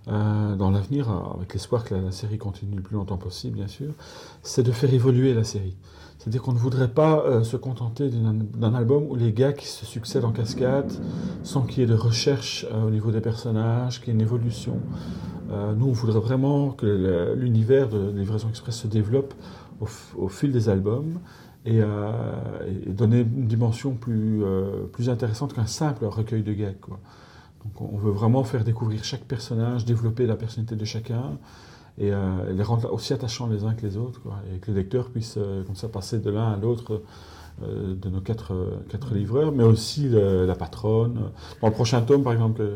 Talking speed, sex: 205 wpm, male